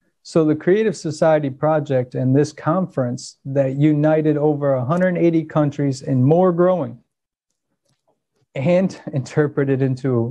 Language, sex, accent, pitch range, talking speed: English, male, American, 135-165 Hz, 110 wpm